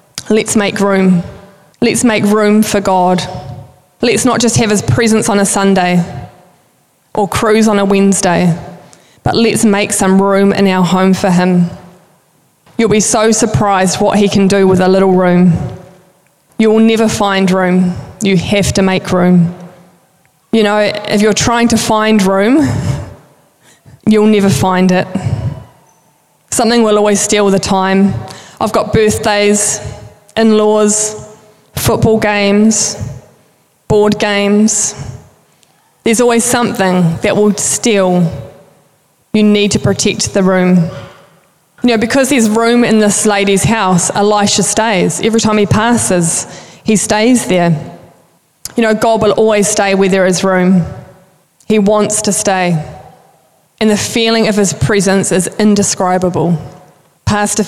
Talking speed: 135 wpm